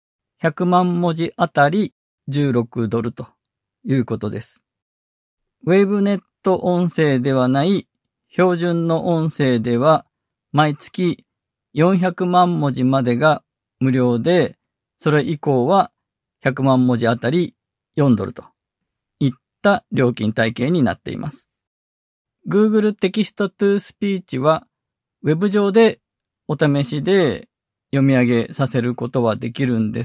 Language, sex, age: Japanese, male, 50-69